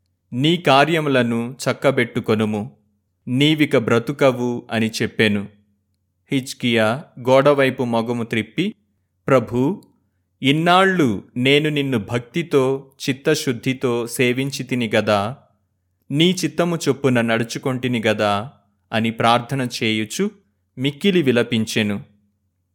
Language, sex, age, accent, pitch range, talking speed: Telugu, male, 30-49, native, 105-135 Hz, 70 wpm